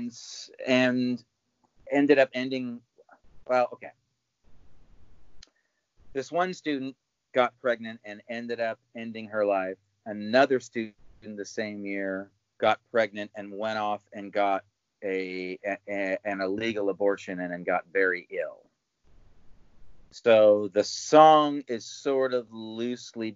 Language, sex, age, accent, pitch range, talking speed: English, male, 40-59, American, 95-120 Hz, 125 wpm